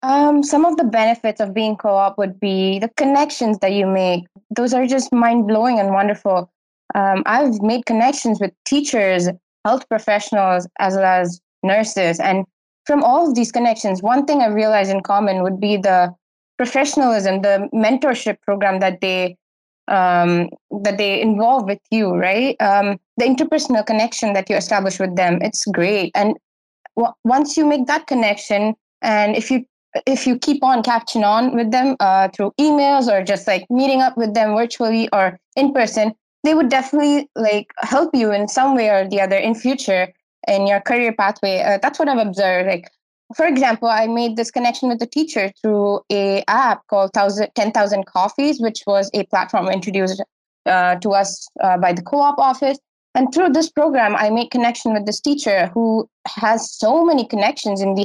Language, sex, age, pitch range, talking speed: English, female, 20-39, 195-255 Hz, 180 wpm